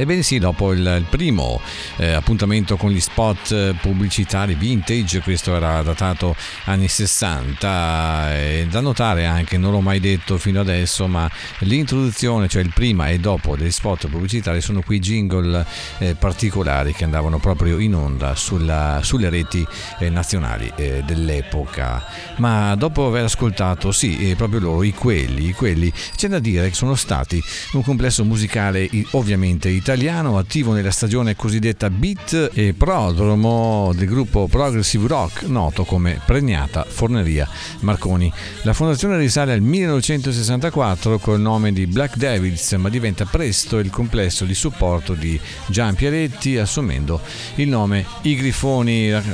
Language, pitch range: Italian, 90-115 Hz